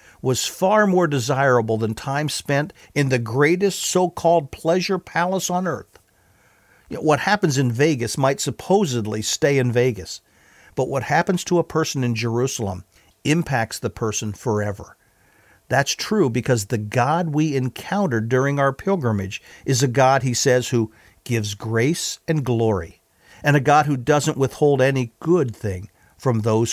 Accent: American